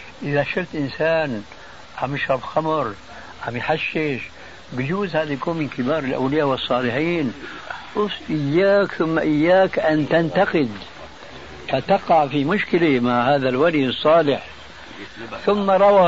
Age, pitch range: 70-89, 130-165 Hz